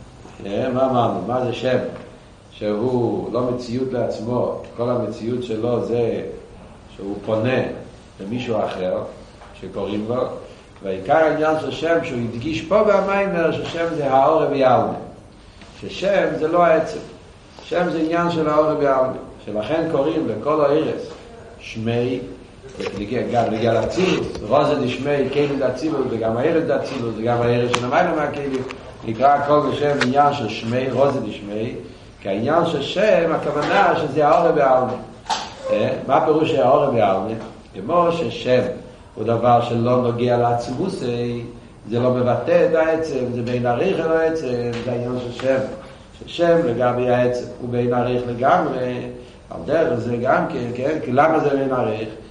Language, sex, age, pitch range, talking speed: Hebrew, male, 60-79, 120-150 Hz, 135 wpm